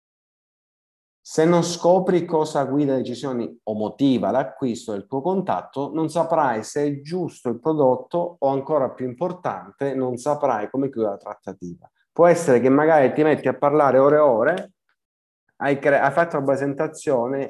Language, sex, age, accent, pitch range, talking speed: Italian, male, 30-49, native, 120-145 Hz, 160 wpm